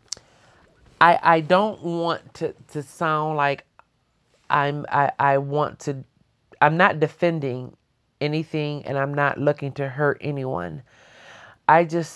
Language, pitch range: English, 140-155 Hz